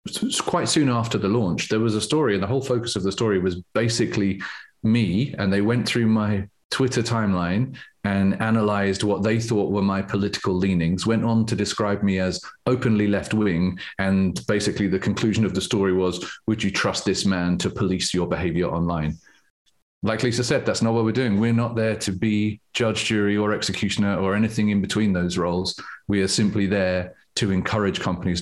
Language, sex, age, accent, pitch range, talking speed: English, male, 30-49, British, 95-115 Hz, 190 wpm